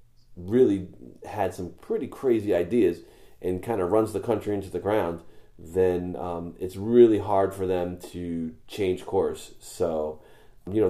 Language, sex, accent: English, male, American